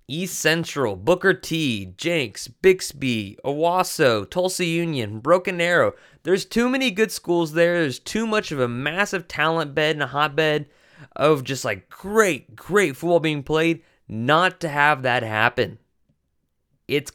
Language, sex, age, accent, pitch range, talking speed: English, male, 20-39, American, 110-160 Hz, 145 wpm